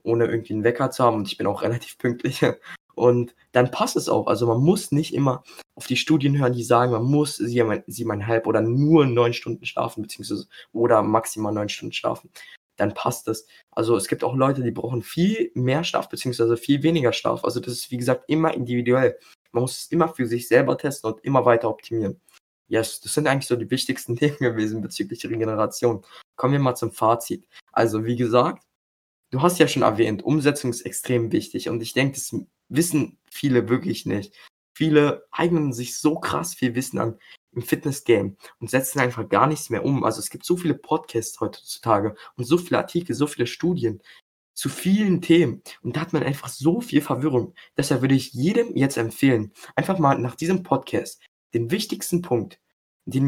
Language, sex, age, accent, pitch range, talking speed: German, male, 20-39, German, 115-150 Hz, 195 wpm